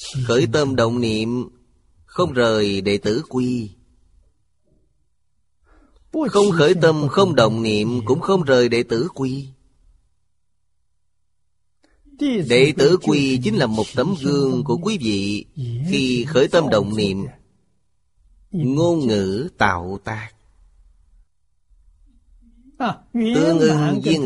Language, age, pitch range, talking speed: Vietnamese, 30-49, 85-135 Hz, 110 wpm